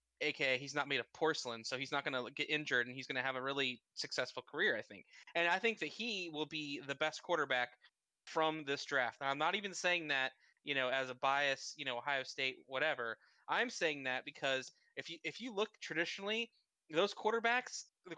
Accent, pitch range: American, 140-190 Hz